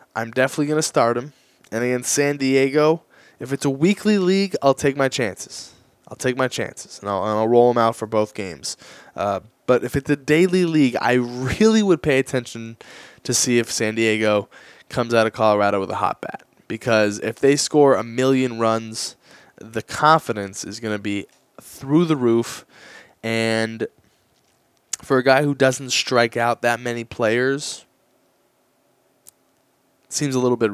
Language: English